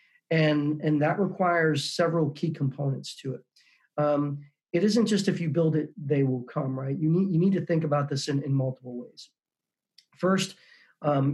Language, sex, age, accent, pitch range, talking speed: English, male, 40-59, American, 135-160 Hz, 185 wpm